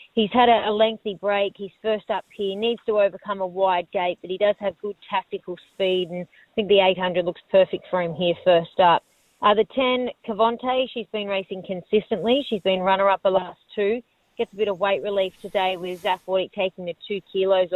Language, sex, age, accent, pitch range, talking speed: English, female, 30-49, Australian, 180-205 Hz, 215 wpm